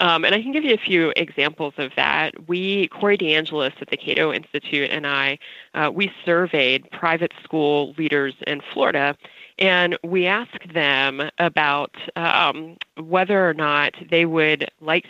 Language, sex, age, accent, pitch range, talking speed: English, female, 30-49, American, 150-185 Hz, 160 wpm